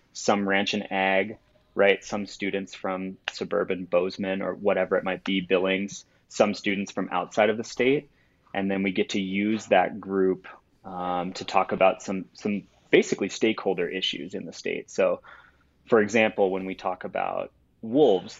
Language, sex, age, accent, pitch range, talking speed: English, male, 20-39, American, 95-105 Hz, 165 wpm